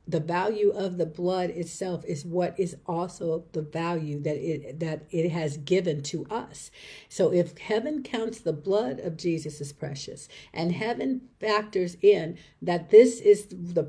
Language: English